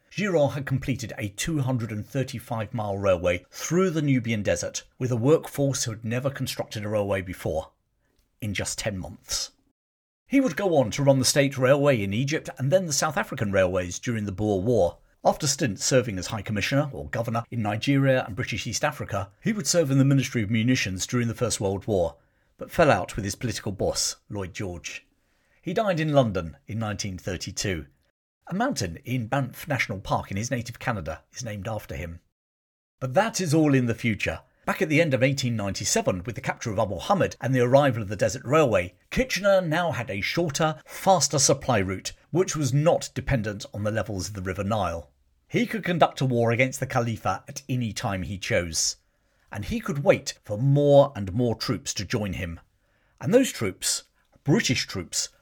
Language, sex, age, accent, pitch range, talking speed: English, male, 50-69, British, 100-140 Hz, 190 wpm